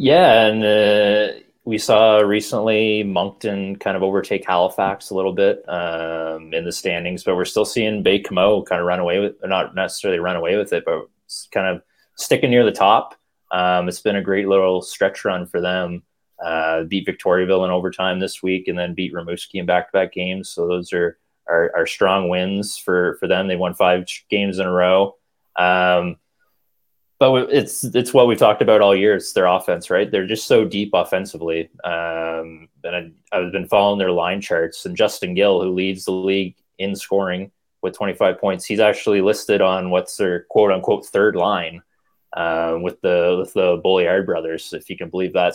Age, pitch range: 20-39, 90-105 Hz